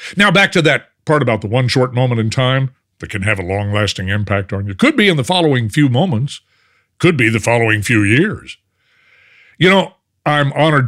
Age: 50-69